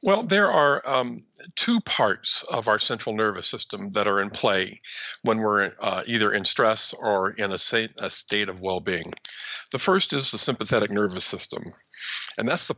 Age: 50-69